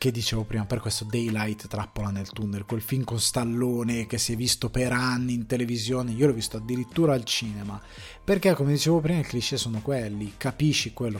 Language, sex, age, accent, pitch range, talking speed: Italian, male, 20-39, native, 110-135 Hz, 200 wpm